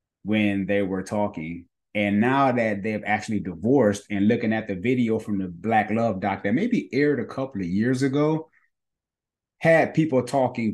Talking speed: 175 wpm